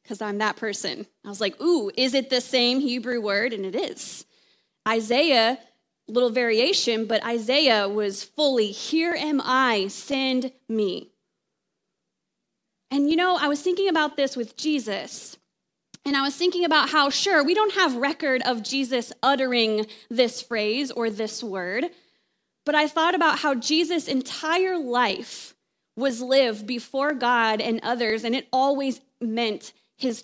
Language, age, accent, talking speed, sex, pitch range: English, 20-39, American, 155 wpm, female, 230-310 Hz